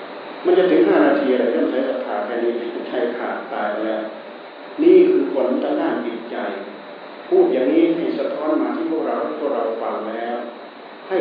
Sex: male